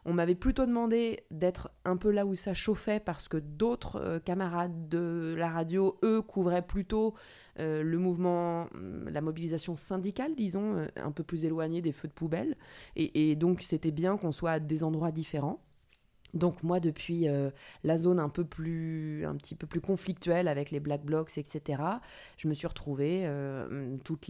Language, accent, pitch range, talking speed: French, French, 150-180 Hz, 180 wpm